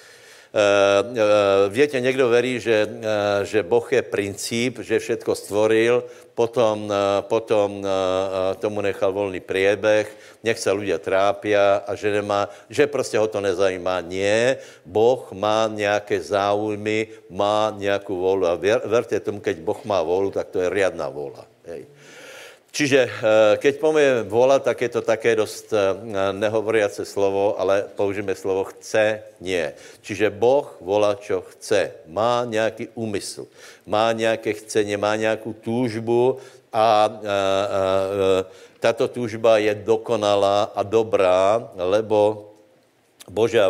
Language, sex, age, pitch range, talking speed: Slovak, male, 60-79, 100-115 Hz, 135 wpm